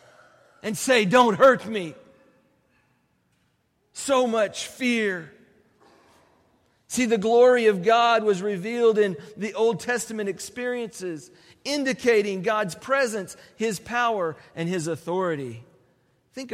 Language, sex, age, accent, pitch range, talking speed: English, male, 40-59, American, 180-230 Hz, 105 wpm